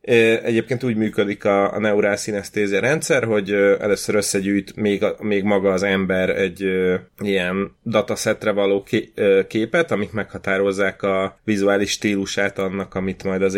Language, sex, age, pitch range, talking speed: Hungarian, male, 30-49, 95-110 Hz, 130 wpm